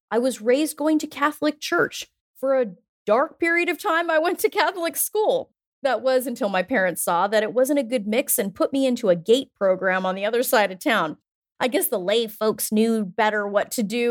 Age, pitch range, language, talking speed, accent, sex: 30-49, 210-275 Hz, English, 225 wpm, American, female